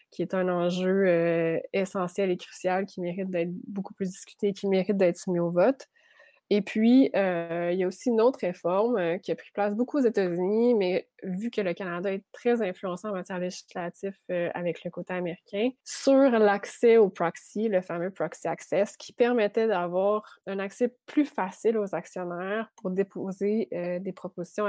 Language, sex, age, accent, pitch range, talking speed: French, female, 20-39, Canadian, 175-205 Hz, 185 wpm